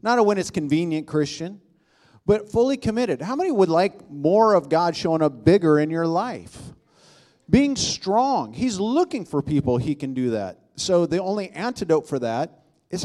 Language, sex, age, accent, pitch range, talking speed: English, male, 50-69, American, 120-195 Hz, 180 wpm